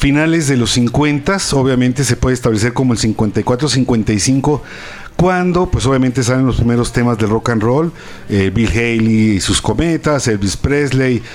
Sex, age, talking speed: male, 50-69, 165 wpm